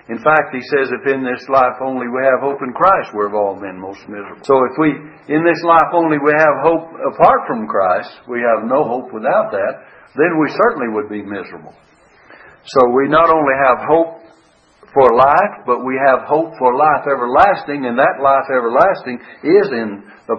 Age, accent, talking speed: 60-79, American, 195 wpm